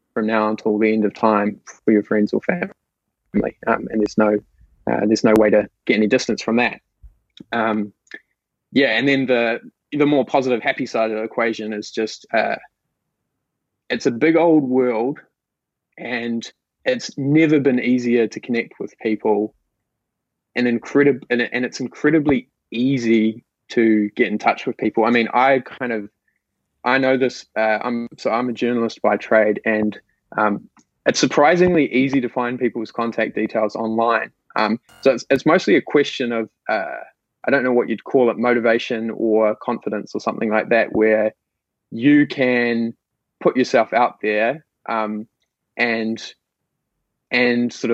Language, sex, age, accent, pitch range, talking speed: English, male, 20-39, Australian, 110-125 Hz, 165 wpm